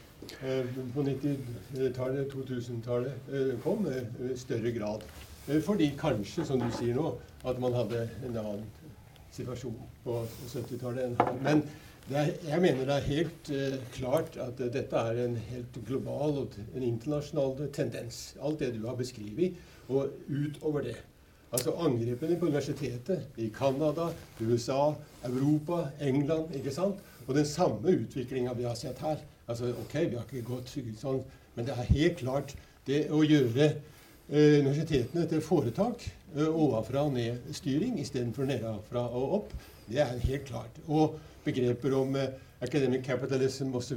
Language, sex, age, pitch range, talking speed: English, male, 60-79, 125-150 Hz, 145 wpm